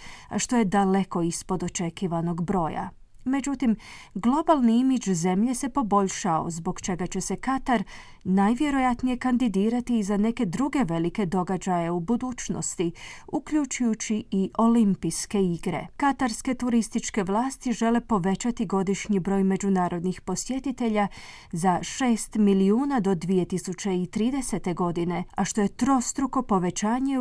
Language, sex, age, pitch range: Croatian, female, 30-49, 185-245 Hz